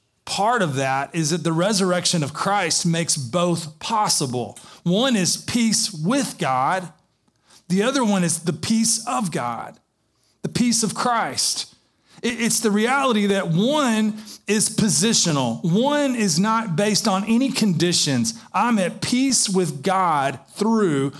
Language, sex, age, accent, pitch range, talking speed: English, male, 30-49, American, 160-215 Hz, 140 wpm